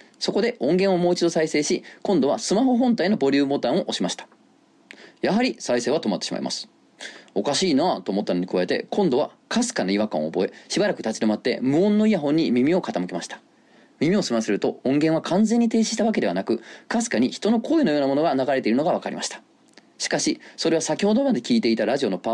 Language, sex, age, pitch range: Japanese, male, 30-49, 130-215 Hz